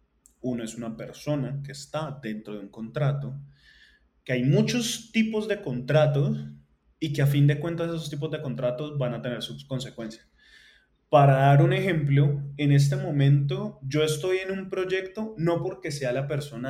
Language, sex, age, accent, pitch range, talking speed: Spanish, male, 20-39, Colombian, 130-165 Hz, 175 wpm